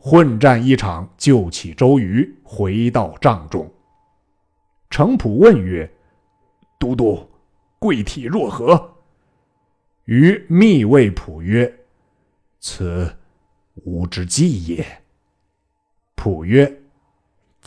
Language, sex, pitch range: Chinese, male, 90-135 Hz